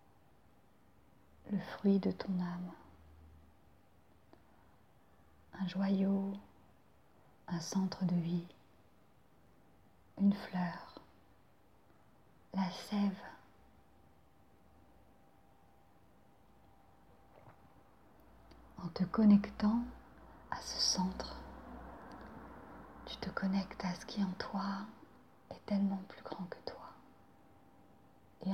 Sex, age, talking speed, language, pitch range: female, 30-49, 75 wpm, French, 175-195 Hz